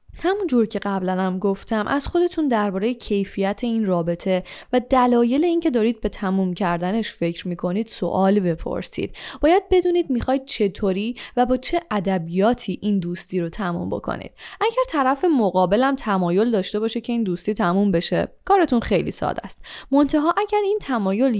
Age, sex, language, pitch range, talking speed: 10-29, female, Persian, 185-255 Hz, 155 wpm